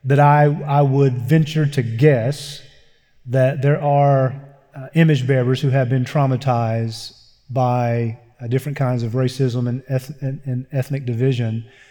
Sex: male